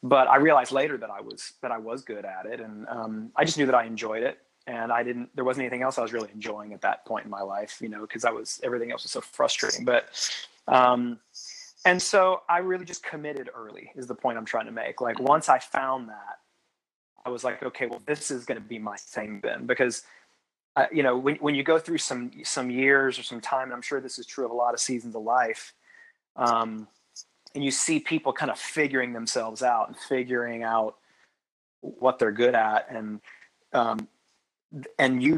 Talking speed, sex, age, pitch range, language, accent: 225 wpm, male, 30-49, 115-140 Hz, English, American